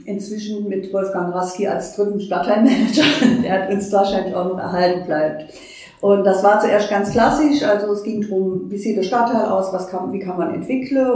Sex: female